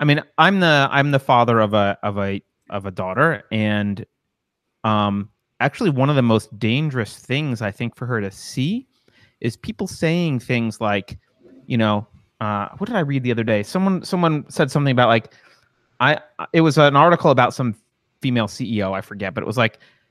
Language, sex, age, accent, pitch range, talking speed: English, male, 30-49, American, 120-195 Hz, 195 wpm